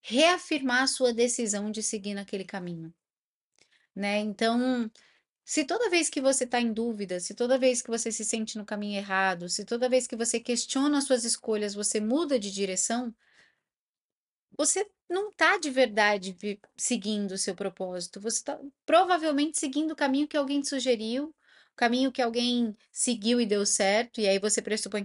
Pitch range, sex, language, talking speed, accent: 200-250 Hz, female, Portuguese, 170 wpm, Brazilian